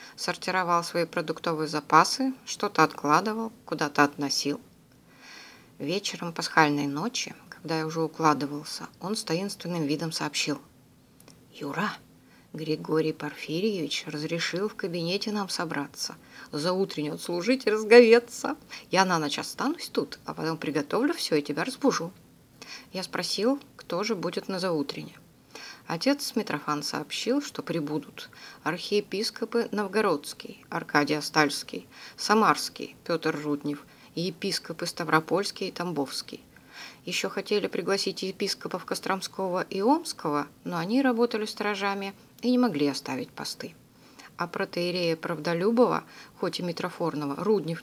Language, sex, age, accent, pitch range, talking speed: Russian, female, 20-39, native, 155-210 Hz, 115 wpm